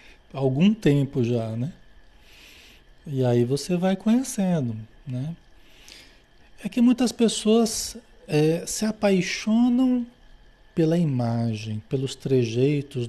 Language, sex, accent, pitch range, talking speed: Portuguese, male, Brazilian, 125-180 Hz, 95 wpm